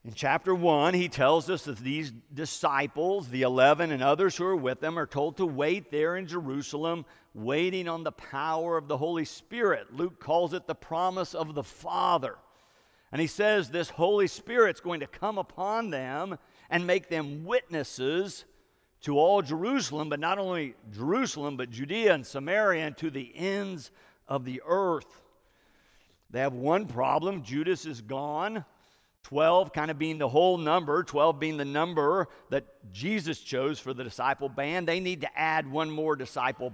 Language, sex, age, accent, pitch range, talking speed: English, male, 50-69, American, 130-170 Hz, 170 wpm